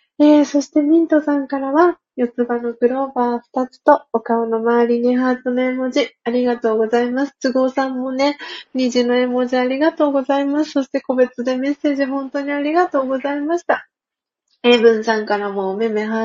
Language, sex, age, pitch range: Japanese, female, 30-49, 245-300 Hz